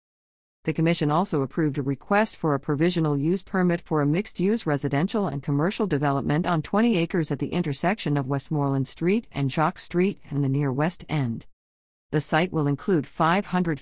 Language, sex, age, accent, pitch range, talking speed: English, female, 40-59, American, 140-180 Hz, 175 wpm